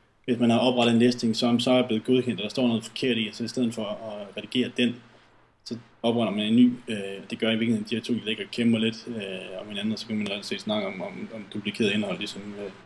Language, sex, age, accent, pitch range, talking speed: Danish, male, 20-39, native, 110-125 Hz, 260 wpm